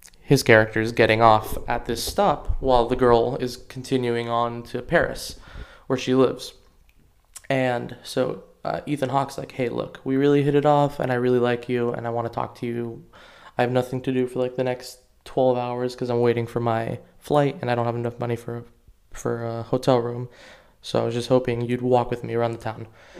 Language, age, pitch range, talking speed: English, 20-39, 115-130 Hz, 215 wpm